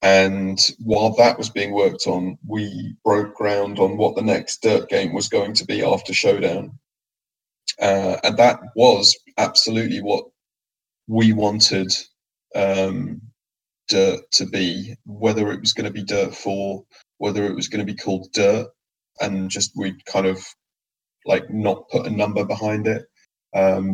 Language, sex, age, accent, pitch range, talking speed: English, male, 20-39, British, 95-105 Hz, 160 wpm